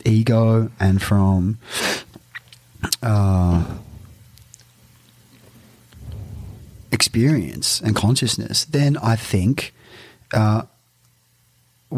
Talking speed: 55 wpm